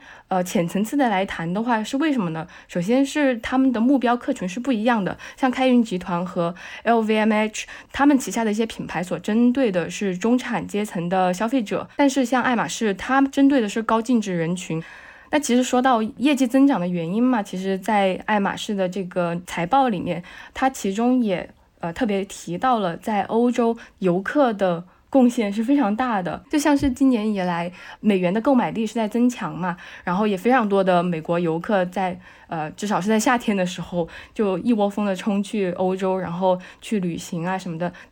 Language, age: Chinese, 10-29